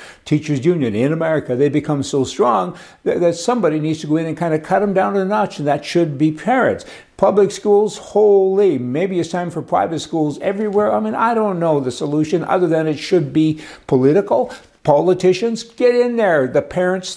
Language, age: English, 60-79